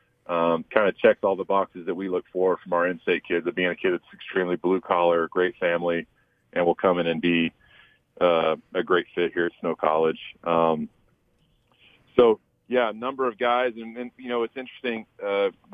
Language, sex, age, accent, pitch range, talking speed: English, male, 40-59, American, 90-110 Hz, 200 wpm